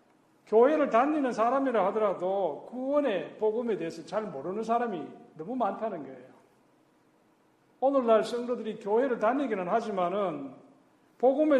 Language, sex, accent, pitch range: Korean, male, native, 175-225 Hz